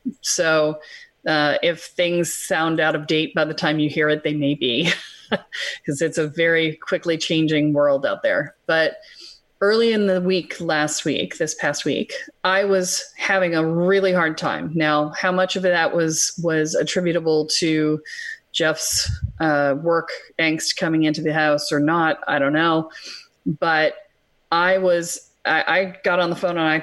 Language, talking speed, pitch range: English, 170 wpm, 155-190 Hz